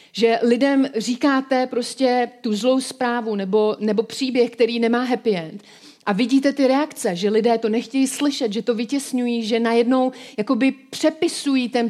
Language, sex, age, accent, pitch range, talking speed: Czech, female, 40-59, native, 210-255 Hz, 150 wpm